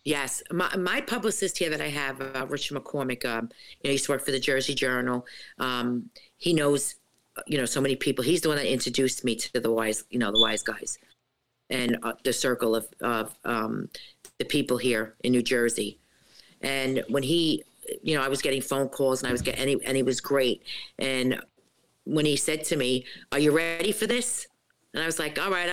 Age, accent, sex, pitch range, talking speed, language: 50-69, American, female, 130-155 Hz, 220 wpm, English